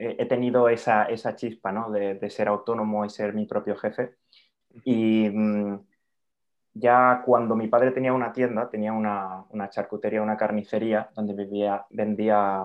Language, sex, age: Spanish, male, 20-39